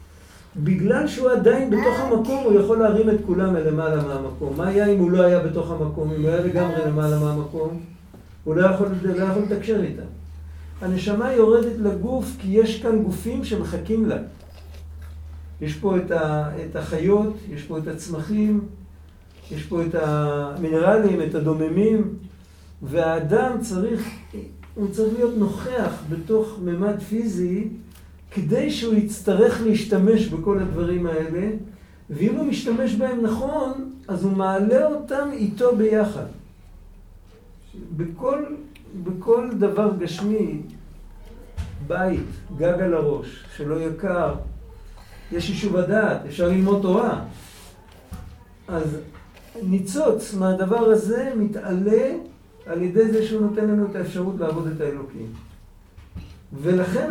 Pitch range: 150-215 Hz